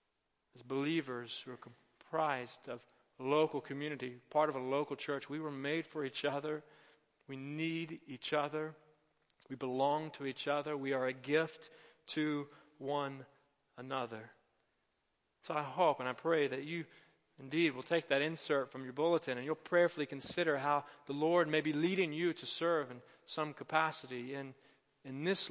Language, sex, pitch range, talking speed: English, male, 140-175 Hz, 165 wpm